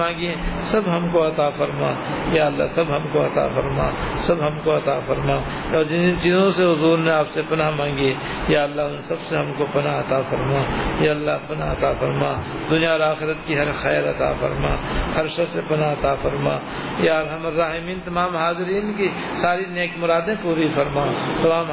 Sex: male